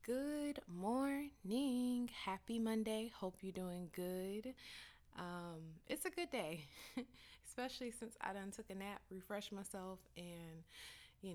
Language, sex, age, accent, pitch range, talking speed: English, female, 20-39, American, 165-205 Hz, 125 wpm